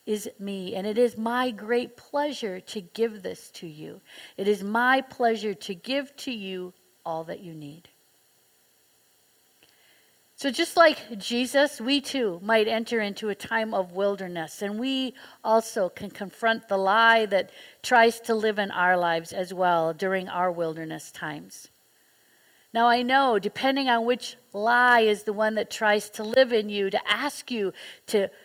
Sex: female